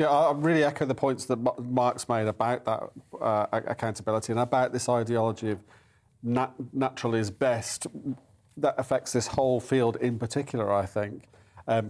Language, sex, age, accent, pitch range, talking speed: English, male, 40-59, British, 110-130 Hz, 155 wpm